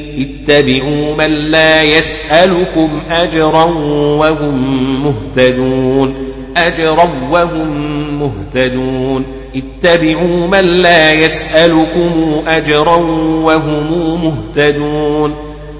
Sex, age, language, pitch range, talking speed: male, 40-59, Arabic, 145-160 Hz, 65 wpm